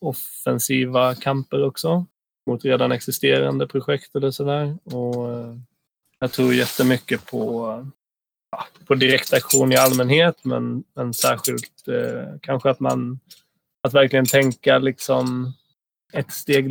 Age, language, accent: 20-39, Swedish, native